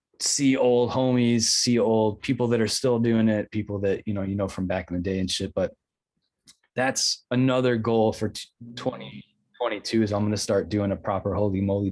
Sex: male